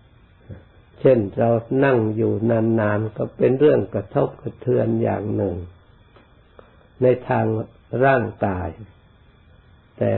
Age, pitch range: 60-79, 90-115 Hz